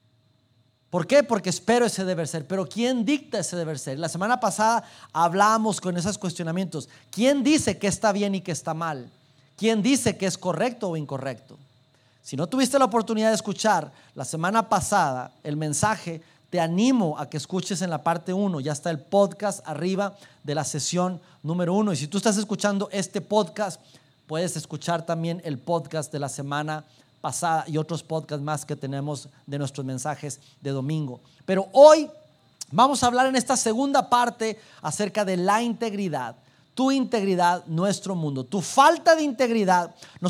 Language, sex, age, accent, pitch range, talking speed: Spanish, male, 30-49, Mexican, 155-215 Hz, 170 wpm